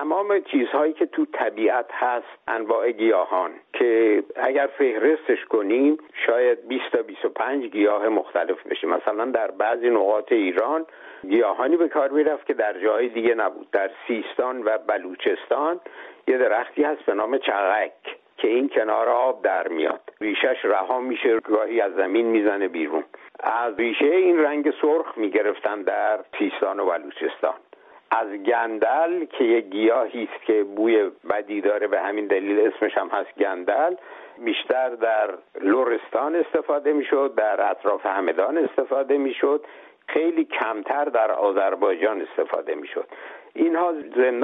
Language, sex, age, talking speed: Persian, male, 60-79, 135 wpm